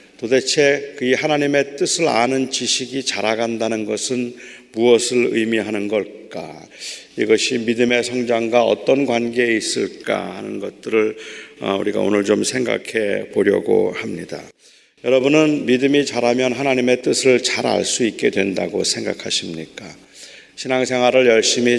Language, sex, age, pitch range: Korean, male, 40-59, 115-135 Hz